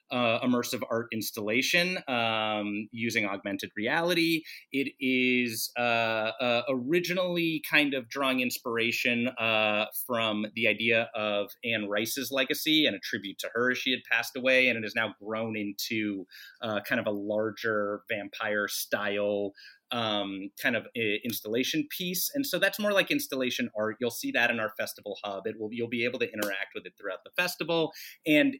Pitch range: 110-135 Hz